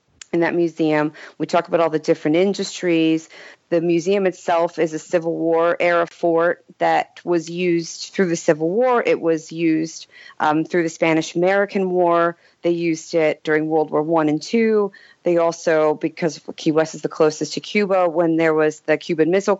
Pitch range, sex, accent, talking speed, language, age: 155-175 Hz, female, American, 180 wpm, English, 40-59